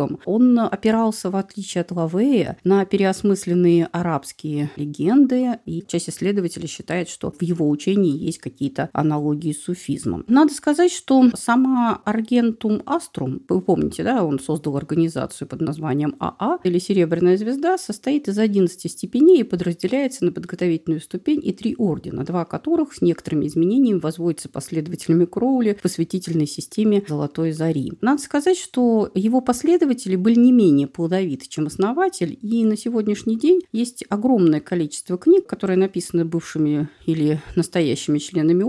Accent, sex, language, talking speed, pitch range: native, female, Russian, 140 wpm, 165-230 Hz